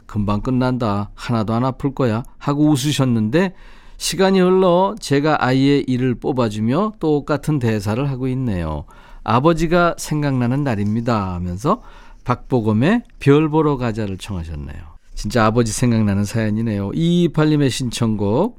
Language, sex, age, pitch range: Korean, male, 40-59, 110-160 Hz